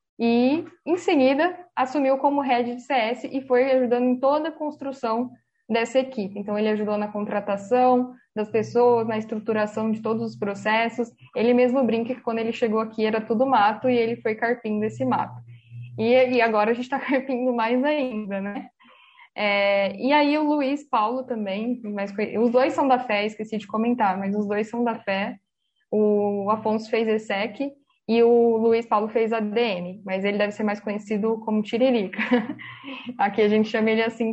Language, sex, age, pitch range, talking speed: Portuguese, female, 10-29, 215-255 Hz, 180 wpm